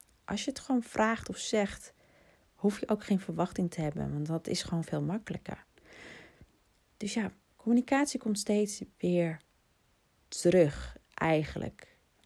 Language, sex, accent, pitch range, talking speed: Dutch, female, Dutch, 155-205 Hz, 135 wpm